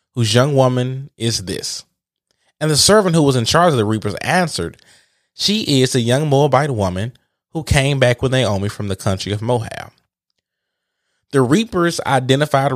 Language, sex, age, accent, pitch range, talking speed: English, male, 20-39, American, 105-140 Hz, 165 wpm